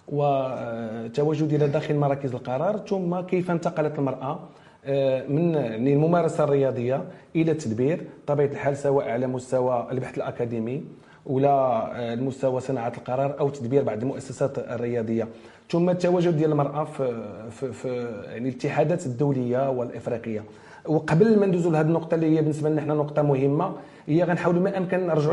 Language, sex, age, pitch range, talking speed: French, male, 40-59, 130-160 Hz, 130 wpm